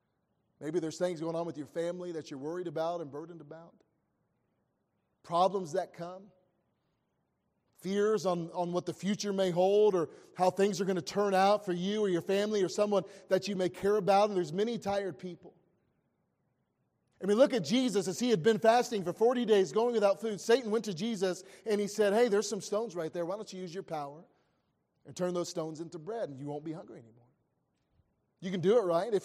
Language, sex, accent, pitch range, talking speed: English, male, American, 170-210 Hz, 215 wpm